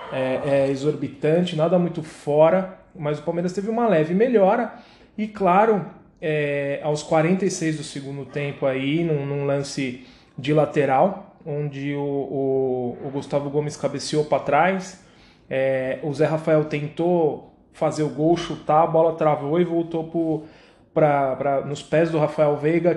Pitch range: 140-175 Hz